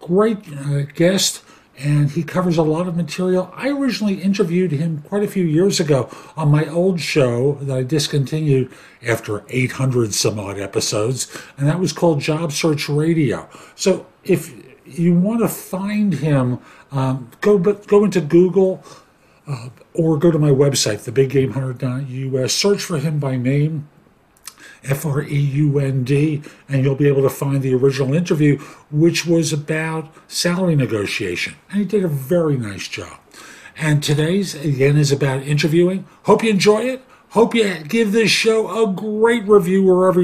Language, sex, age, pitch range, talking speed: English, male, 50-69, 140-195 Hz, 155 wpm